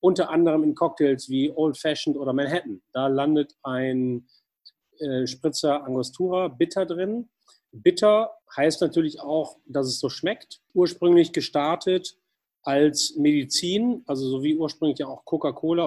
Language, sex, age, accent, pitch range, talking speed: German, male, 30-49, German, 140-170 Hz, 135 wpm